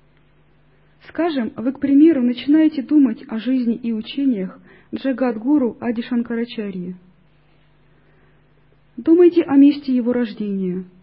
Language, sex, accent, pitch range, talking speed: Russian, female, native, 190-270 Hz, 90 wpm